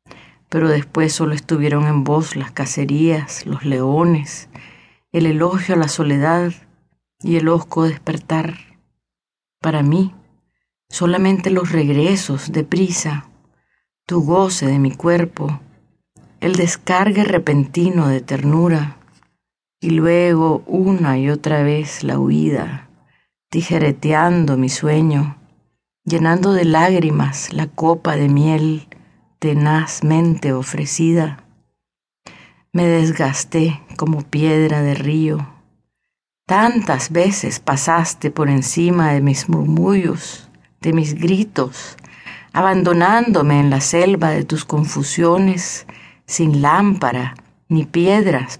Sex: female